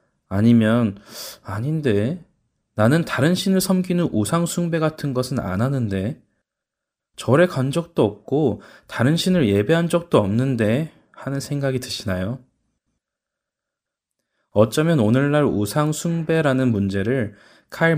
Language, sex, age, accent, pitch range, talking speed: English, male, 20-39, Korean, 105-145 Hz, 100 wpm